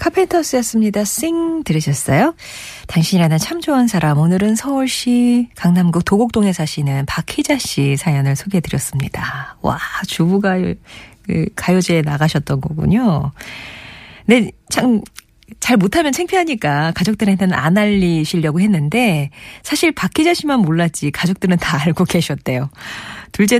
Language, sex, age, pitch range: Korean, female, 40-59, 160-220 Hz